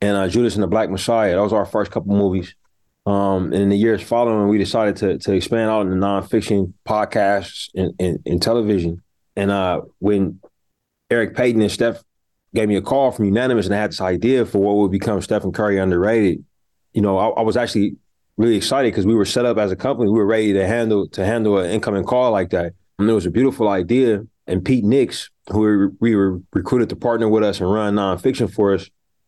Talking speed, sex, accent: 220 wpm, male, American